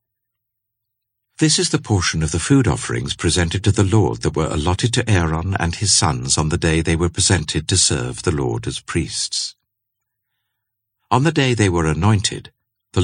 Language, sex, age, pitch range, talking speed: English, male, 60-79, 90-115 Hz, 180 wpm